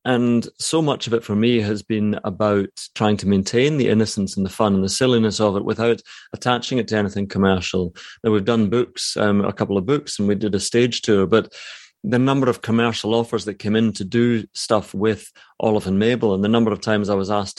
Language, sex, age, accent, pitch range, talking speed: English, male, 30-49, British, 100-115 Hz, 230 wpm